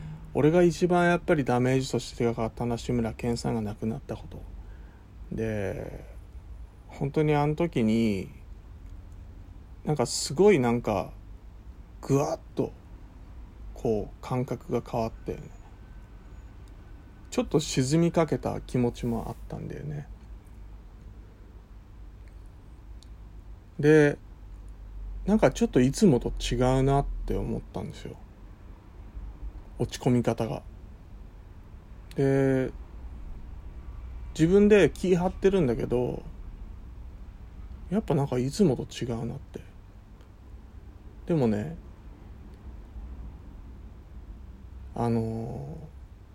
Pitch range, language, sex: 90-130 Hz, Japanese, male